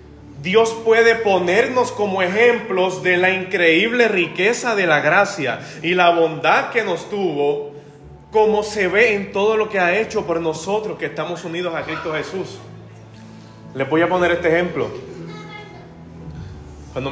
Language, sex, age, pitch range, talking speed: Spanish, male, 30-49, 145-200 Hz, 145 wpm